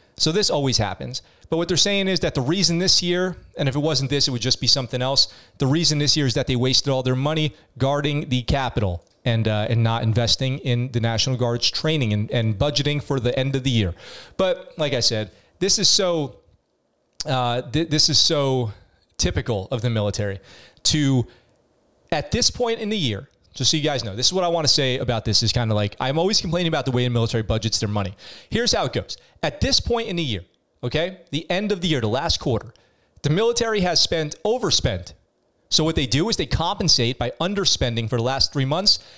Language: English